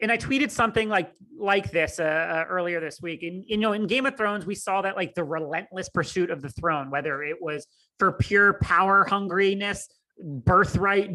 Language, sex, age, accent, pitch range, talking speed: English, male, 30-49, American, 165-205 Hz, 200 wpm